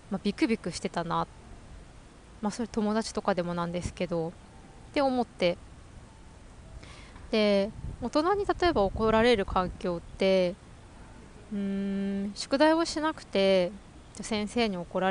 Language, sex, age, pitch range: Japanese, female, 20-39, 185-245 Hz